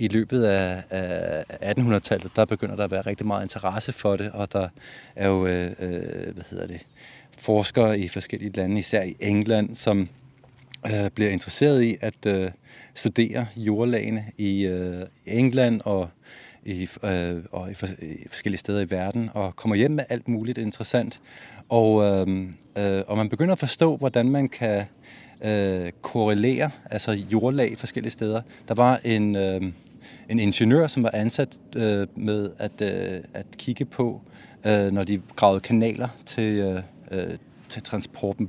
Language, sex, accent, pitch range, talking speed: Danish, male, native, 100-125 Hz, 135 wpm